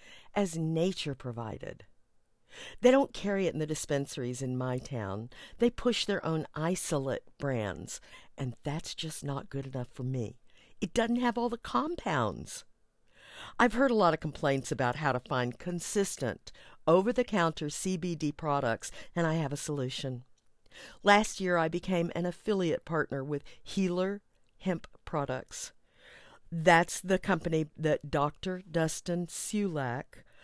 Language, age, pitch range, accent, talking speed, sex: English, 50-69, 140-185 Hz, American, 140 wpm, female